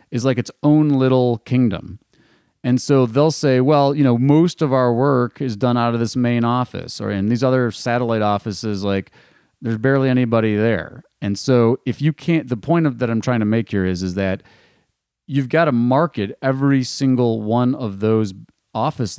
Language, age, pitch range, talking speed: English, 30-49, 100-125 Hz, 195 wpm